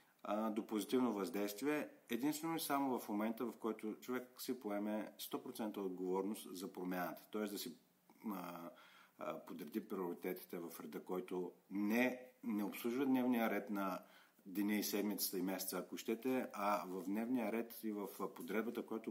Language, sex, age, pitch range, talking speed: Bulgarian, male, 50-69, 100-125 Hz, 150 wpm